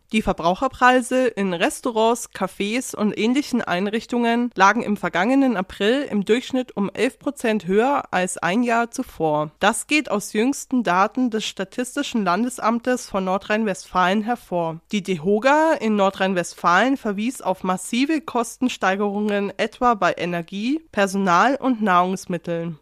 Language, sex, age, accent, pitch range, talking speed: German, female, 20-39, German, 190-245 Hz, 125 wpm